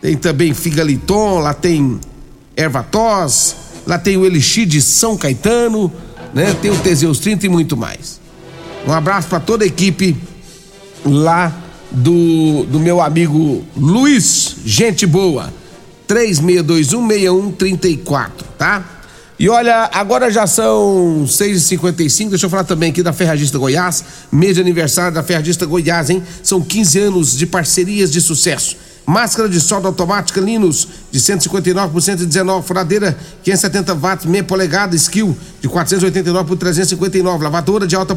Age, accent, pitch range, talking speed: 50-69, Brazilian, 165-195 Hz, 135 wpm